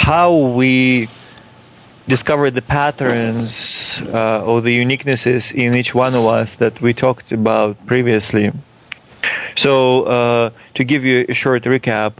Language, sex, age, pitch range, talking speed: English, male, 20-39, 115-130 Hz, 135 wpm